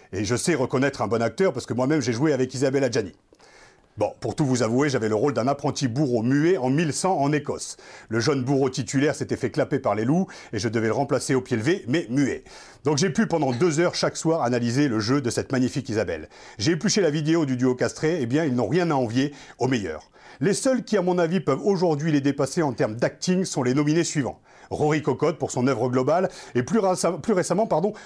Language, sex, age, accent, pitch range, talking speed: French, male, 40-59, French, 130-160 Hz, 240 wpm